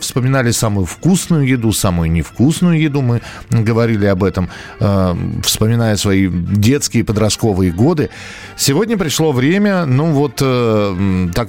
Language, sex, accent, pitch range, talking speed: Russian, male, native, 100-135 Hz, 125 wpm